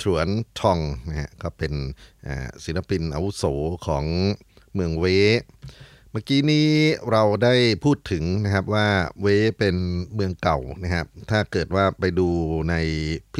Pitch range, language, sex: 80-100 Hz, Thai, male